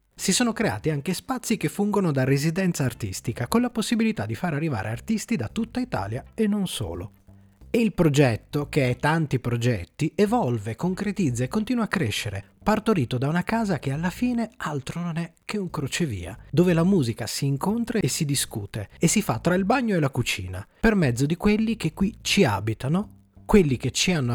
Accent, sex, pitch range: native, male, 115-175 Hz